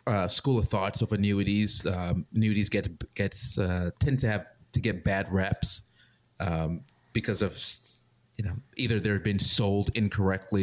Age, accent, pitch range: 30-49, American, 95-115 Hz